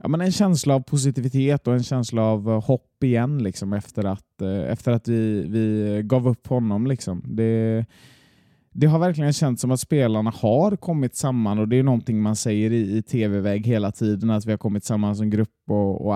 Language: Swedish